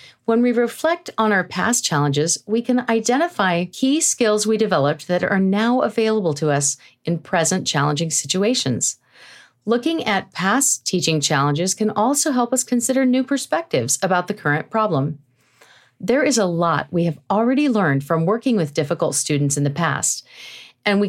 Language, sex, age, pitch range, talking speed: English, female, 40-59, 155-235 Hz, 165 wpm